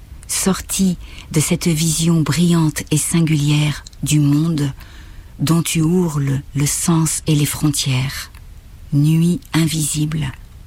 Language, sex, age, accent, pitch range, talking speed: French, female, 50-69, French, 135-170 Hz, 105 wpm